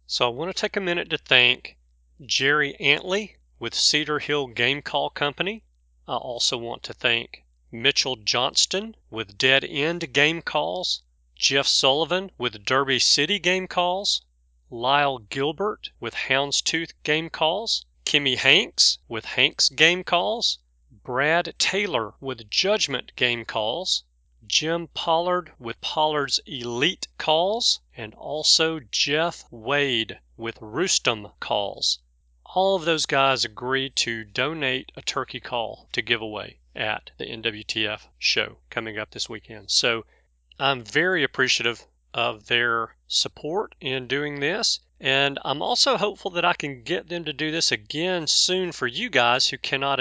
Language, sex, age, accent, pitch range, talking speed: English, male, 40-59, American, 115-165 Hz, 140 wpm